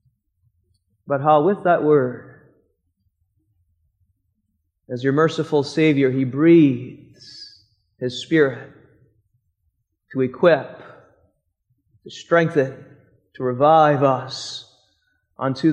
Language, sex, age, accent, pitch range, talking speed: English, male, 30-49, American, 110-150 Hz, 80 wpm